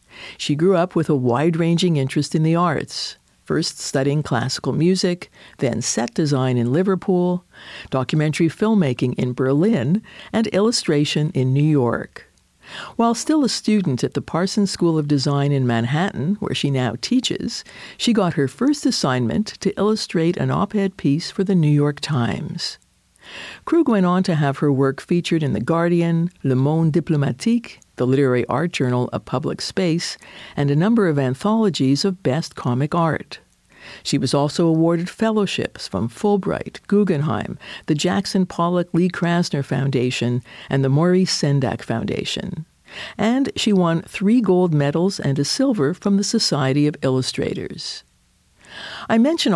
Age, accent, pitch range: 50-69, American, 140-195 Hz